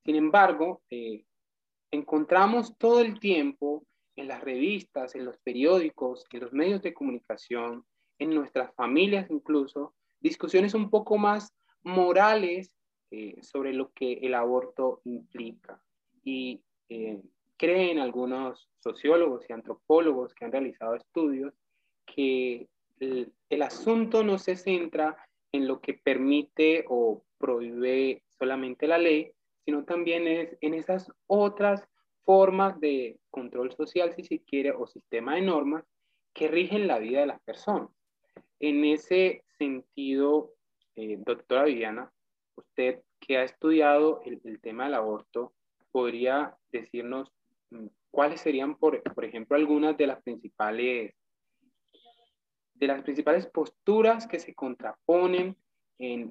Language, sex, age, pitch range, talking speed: Spanish, male, 20-39, 130-180 Hz, 125 wpm